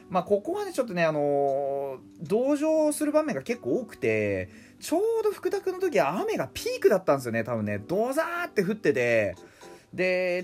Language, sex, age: Japanese, male, 30-49